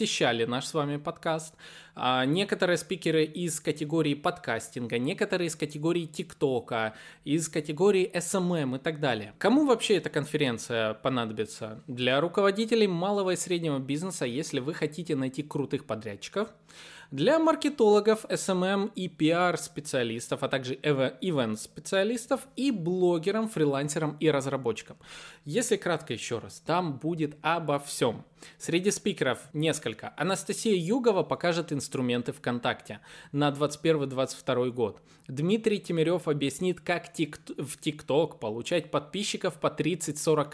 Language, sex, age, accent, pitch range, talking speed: Russian, male, 20-39, native, 140-180 Hz, 120 wpm